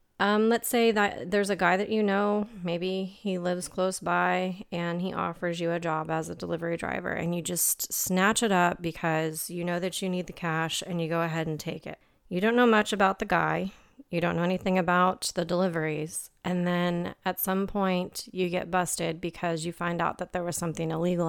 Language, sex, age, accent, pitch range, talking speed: English, female, 30-49, American, 165-190 Hz, 215 wpm